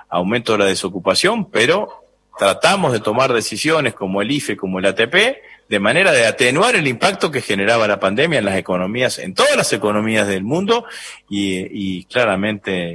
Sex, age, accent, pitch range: male, 40-59, Argentinian, 95-130 Hz